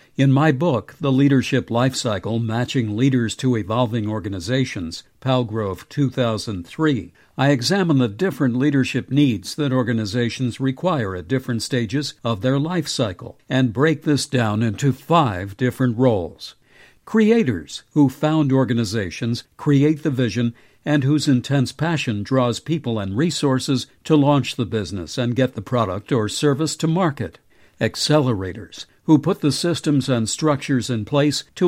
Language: English